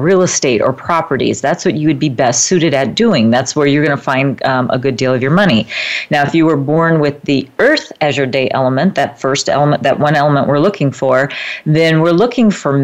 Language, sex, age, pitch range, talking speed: English, female, 40-59, 130-150 Hz, 240 wpm